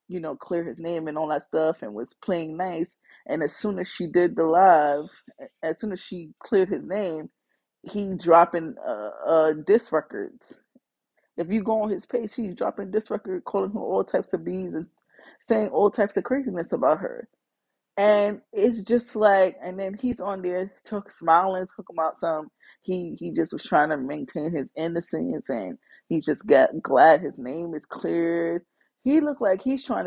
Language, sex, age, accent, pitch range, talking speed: English, female, 20-39, American, 175-250 Hz, 190 wpm